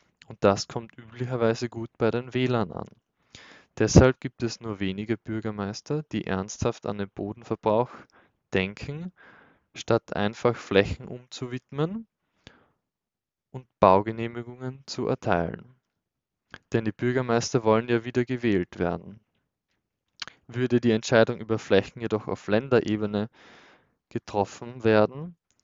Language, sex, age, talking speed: German, male, 20-39, 110 wpm